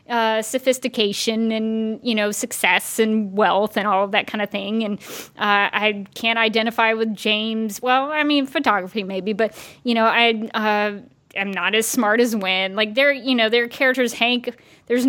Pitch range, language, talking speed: 200-235 Hz, English, 185 wpm